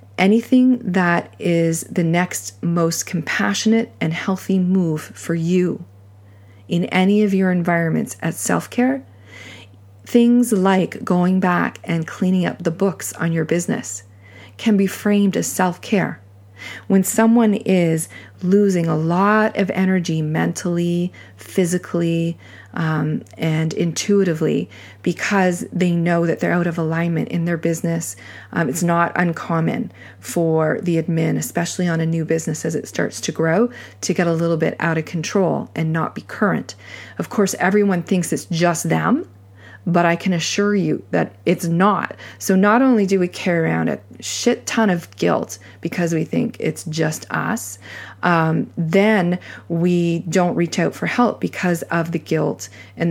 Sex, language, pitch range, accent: female, English, 155-185 Hz, American